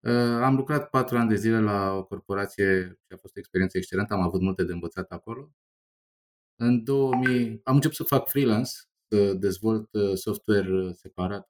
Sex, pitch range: male, 95-125 Hz